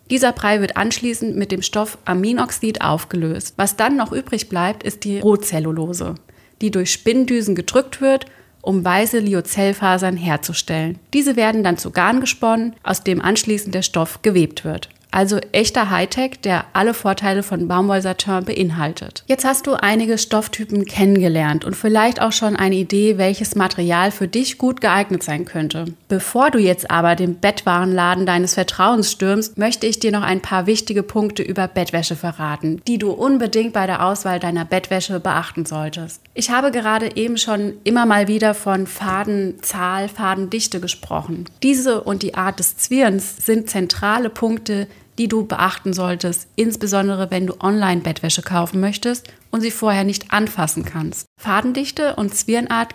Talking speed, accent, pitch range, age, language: 155 wpm, German, 180-220 Hz, 30-49, German